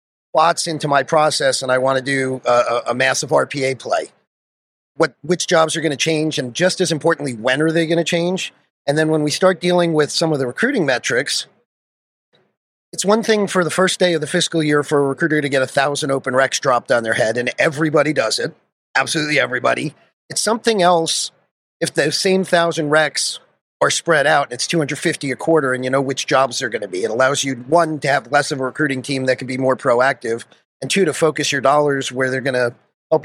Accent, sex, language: American, male, English